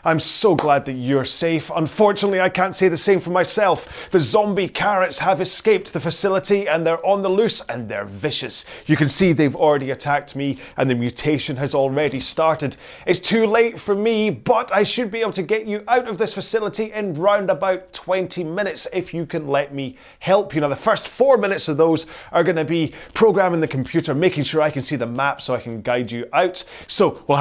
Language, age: English, 30-49